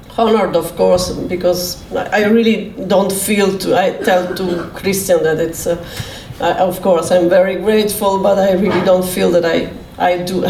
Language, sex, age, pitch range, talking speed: Finnish, female, 40-59, 175-205 Hz, 175 wpm